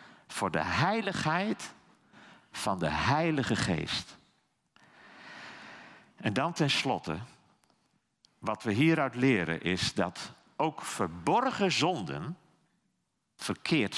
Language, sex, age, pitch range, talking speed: Dutch, male, 50-69, 130-185 Hz, 85 wpm